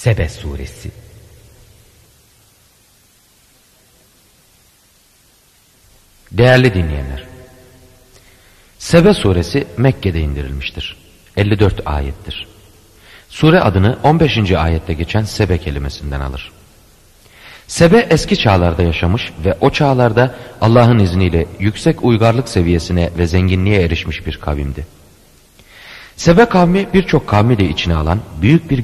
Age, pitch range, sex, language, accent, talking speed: 40-59, 85-120 Hz, male, Turkish, native, 90 wpm